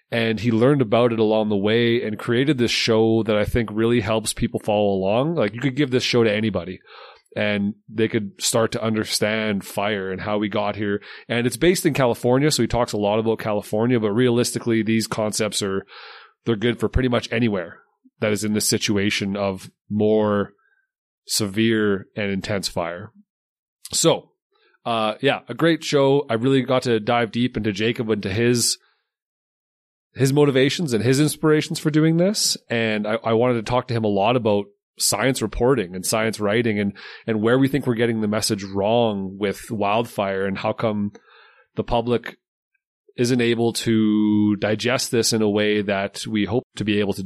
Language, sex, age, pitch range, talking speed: English, male, 30-49, 105-130 Hz, 190 wpm